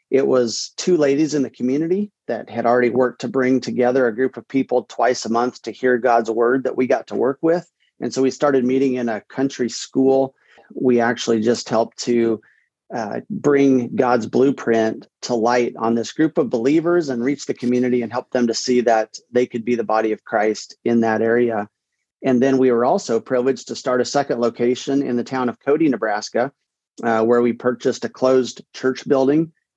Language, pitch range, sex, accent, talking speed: English, 120-135 Hz, male, American, 205 wpm